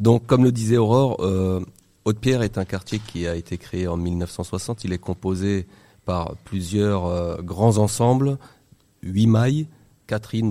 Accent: French